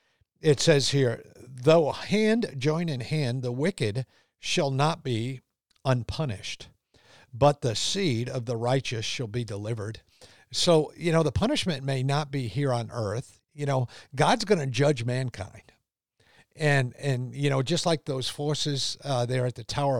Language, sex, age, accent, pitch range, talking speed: English, male, 50-69, American, 120-150 Hz, 160 wpm